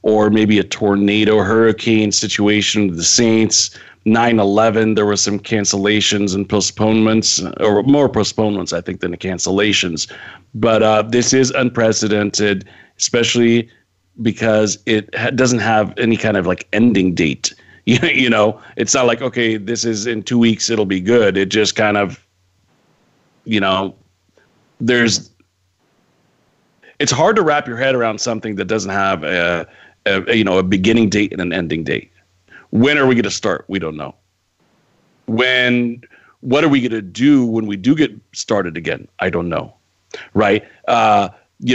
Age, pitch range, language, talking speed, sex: 40-59, 100-120 Hz, English, 160 wpm, male